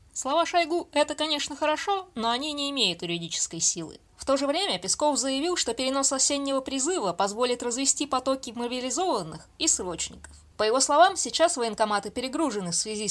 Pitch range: 215-300 Hz